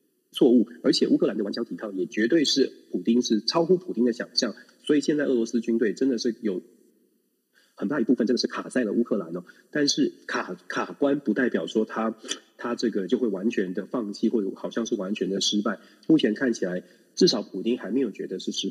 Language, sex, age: Chinese, male, 30-49